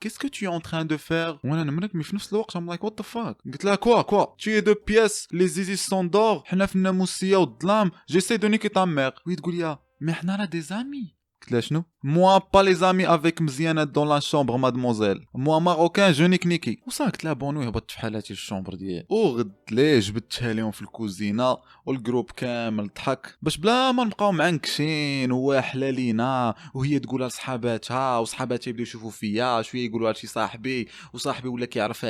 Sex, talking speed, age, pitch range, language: male, 200 wpm, 20-39, 120-190 Hz, Arabic